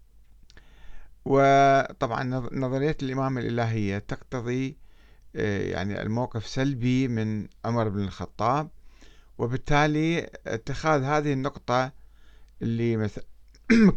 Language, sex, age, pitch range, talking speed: Arabic, male, 50-69, 110-150 Hz, 75 wpm